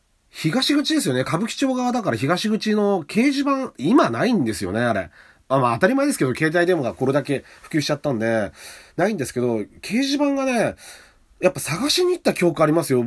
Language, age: Japanese, 40-59